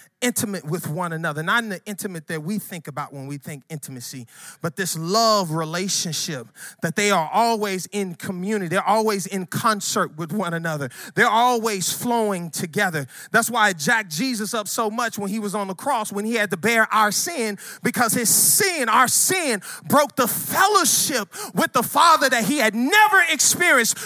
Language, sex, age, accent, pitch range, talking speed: English, male, 30-49, American, 175-275 Hz, 185 wpm